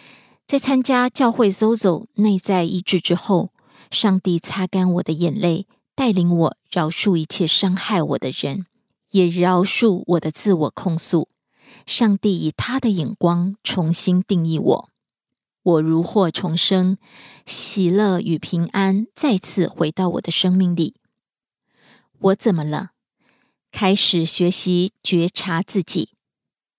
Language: Korean